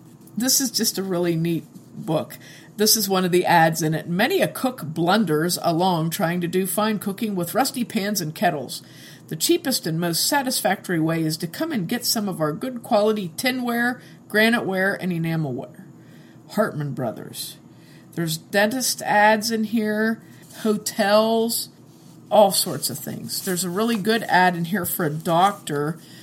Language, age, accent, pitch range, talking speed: English, 50-69, American, 165-225 Hz, 165 wpm